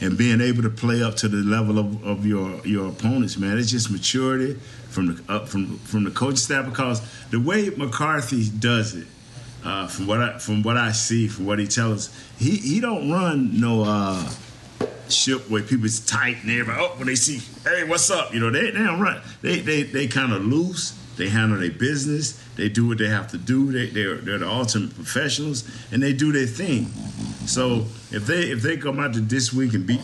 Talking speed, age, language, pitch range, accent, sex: 225 wpm, 50-69, English, 105-130 Hz, American, male